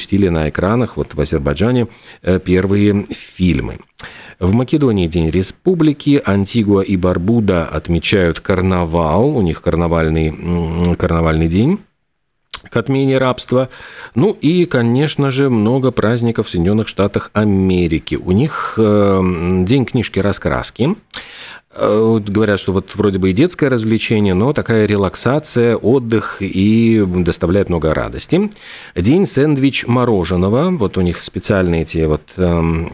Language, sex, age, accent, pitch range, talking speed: Russian, male, 40-59, native, 90-120 Hz, 115 wpm